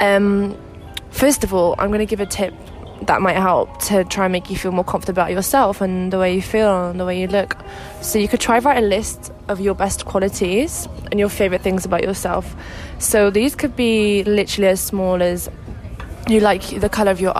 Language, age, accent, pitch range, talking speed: English, 20-39, British, 185-210 Hz, 225 wpm